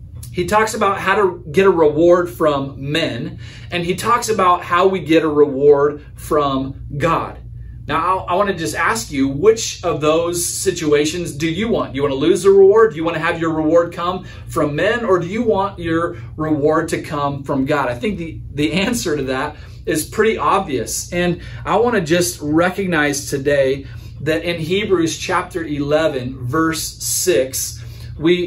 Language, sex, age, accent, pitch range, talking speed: English, male, 40-59, American, 140-180 Hz, 185 wpm